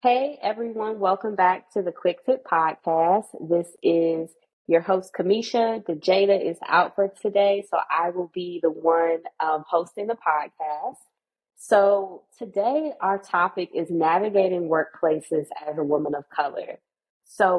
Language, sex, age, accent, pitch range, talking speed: English, female, 20-39, American, 155-190 Hz, 145 wpm